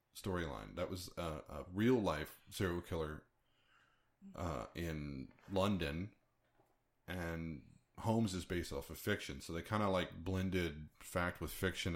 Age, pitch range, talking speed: 30-49, 85-105 Hz, 140 wpm